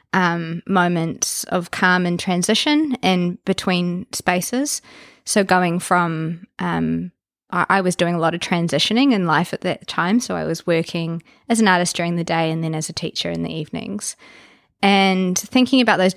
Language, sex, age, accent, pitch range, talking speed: English, female, 20-39, Australian, 175-205 Hz, 180 wpm